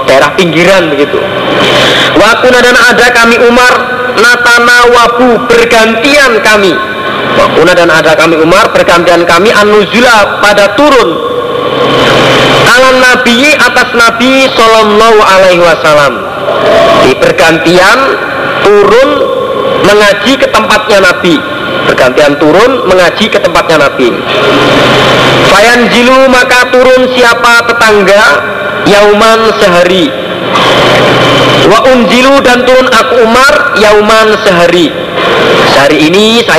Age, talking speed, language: 40-59, 100 wpm, Indonesian